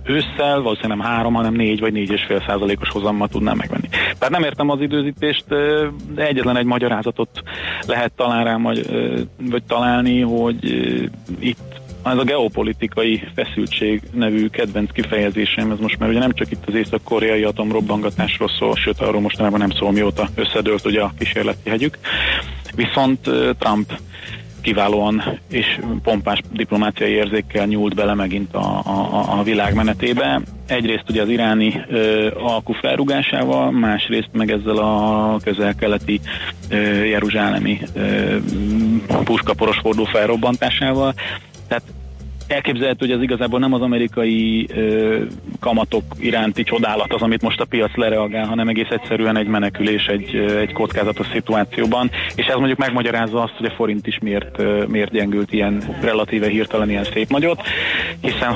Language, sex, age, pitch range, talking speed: Hungarian, male, 30-49, 105-115 Hz, 140 wpm